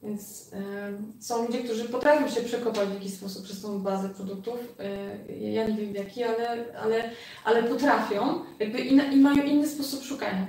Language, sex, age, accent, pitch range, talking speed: Polish, female, 20-39, native, 205-240 Hz, 175 wpm